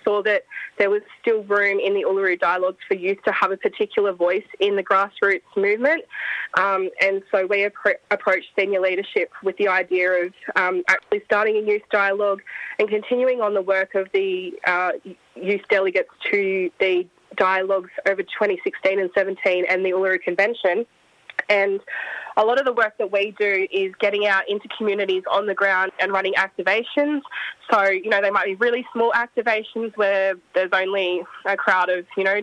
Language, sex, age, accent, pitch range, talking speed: English, female, 20-39, Australian, 190-225 Hz, 180 wpm